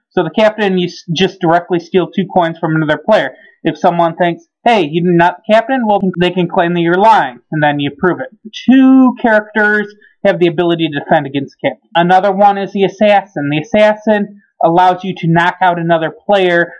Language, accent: English, American